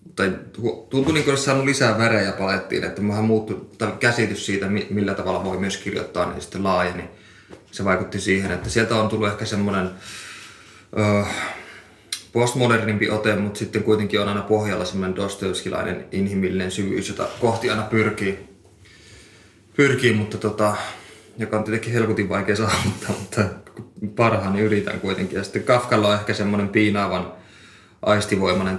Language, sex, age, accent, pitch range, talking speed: Finnish, male, 20-39, native, 95-110 Hz, 140 wpm